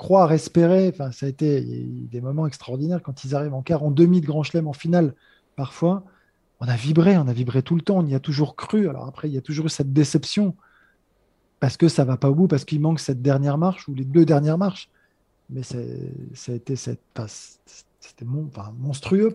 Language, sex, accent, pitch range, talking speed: French, male, French, 140-170 Hz, 210 wpm